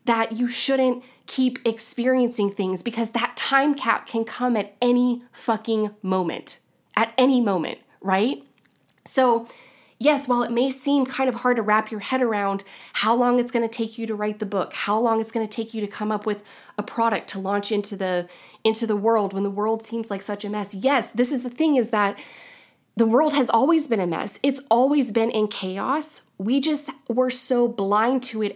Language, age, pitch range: English, 20-39, 215-265 Hz